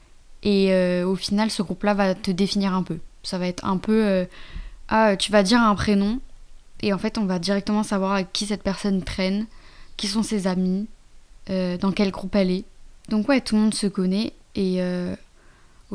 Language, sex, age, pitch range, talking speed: French, female, 20-39, 185-210 Hz, 205 wpm